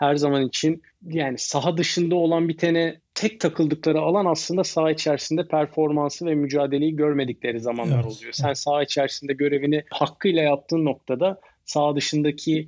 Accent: native